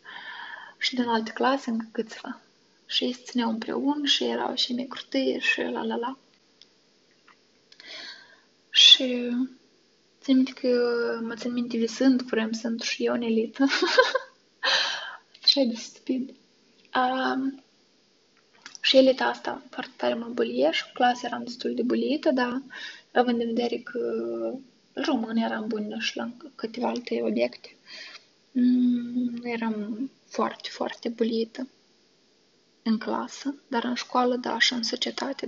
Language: Romanian